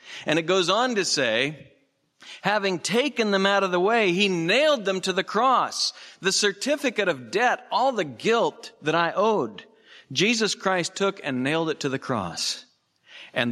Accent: American